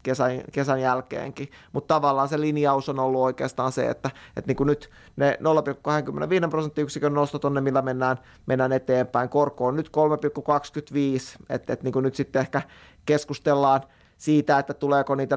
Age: 20-39